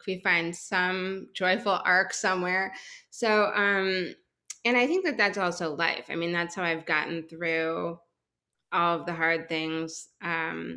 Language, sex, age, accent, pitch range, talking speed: English, female, 20-39, American, 165-195 Hz, 155 wpm